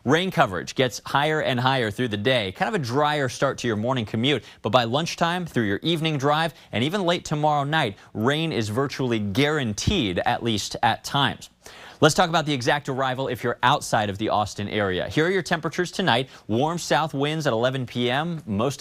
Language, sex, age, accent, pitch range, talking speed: English, male, 30-49, American, 115-160 Hz, 200 wpm